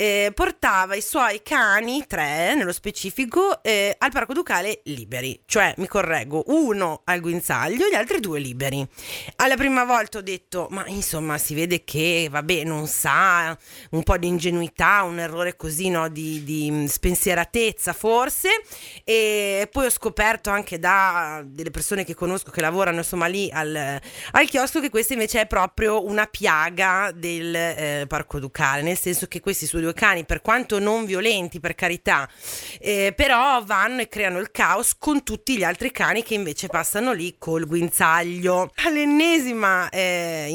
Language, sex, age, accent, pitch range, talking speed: Italian, female, 30-49, native, 170-225 Hz, 155 wpm